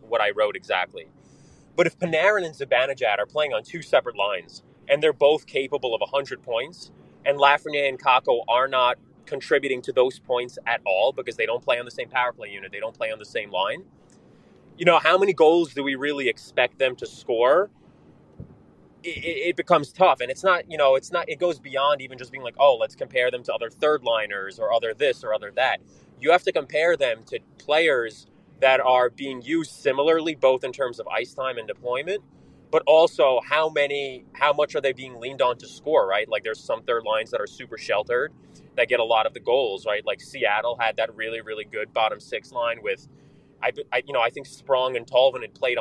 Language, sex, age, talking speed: English, male, 20-39, 220 wpm